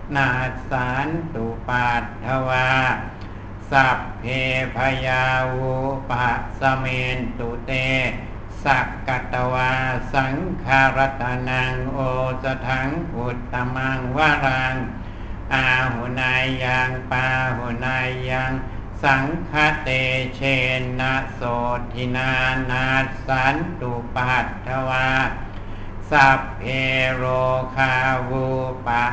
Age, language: 60-79, Thai